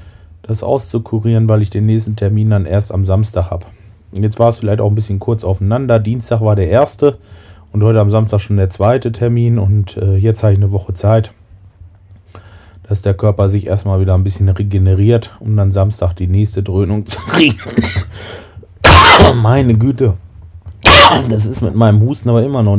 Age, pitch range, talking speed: 30-49, 95-110 Hz, 180 wpm